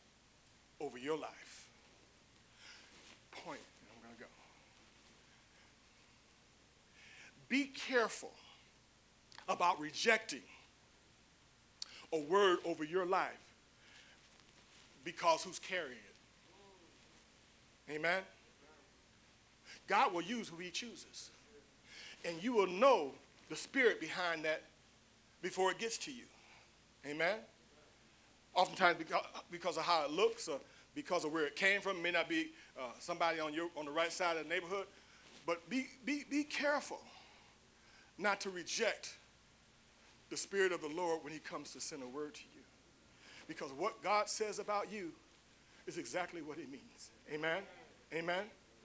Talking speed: 130 wpm